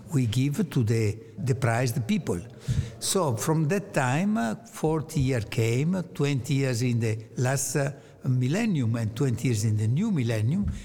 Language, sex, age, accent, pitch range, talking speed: English, male, 60-79, Italian, 120-155 Hz, 160 wpm